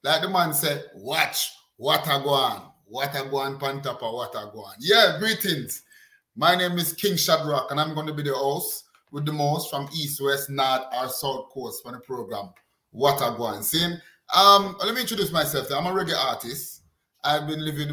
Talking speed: 185 wpm